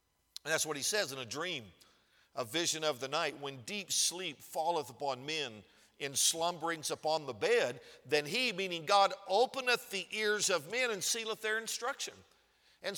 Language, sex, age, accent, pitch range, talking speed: English, male, 50-69, American, 165-220 Hz, 175 wpm